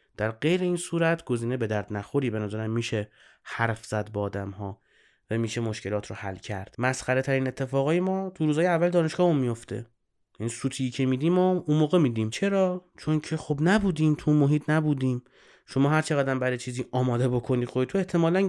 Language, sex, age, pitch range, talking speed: Persian, male, 30-49, 115-150 Hz, 185 wpm